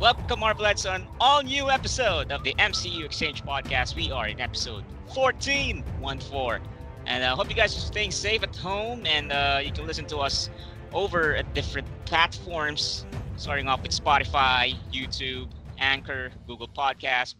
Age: 30-49